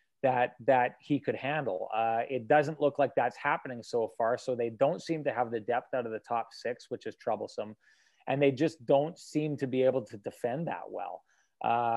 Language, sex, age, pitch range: English, male, 30-49, 125-150 Hz